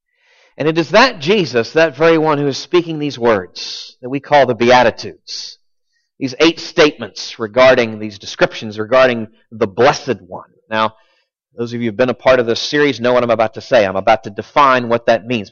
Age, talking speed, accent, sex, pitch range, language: 40-59, 205 wpm, American, male, 125-180 Hz, English